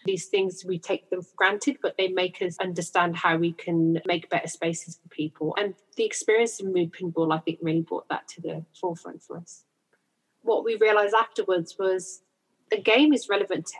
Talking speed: 200 wpm